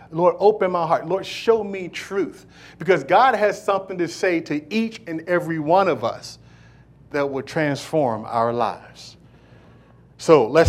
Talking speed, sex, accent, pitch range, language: 155 wpm, male, American, 120-180 Hz, English